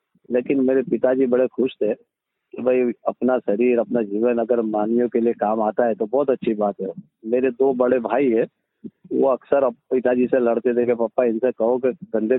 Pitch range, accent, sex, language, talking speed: 120-135 Hz, native, male, Hindi, 200 wpm